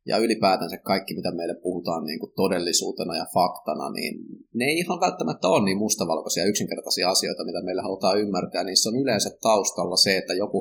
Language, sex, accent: Finnish, male, native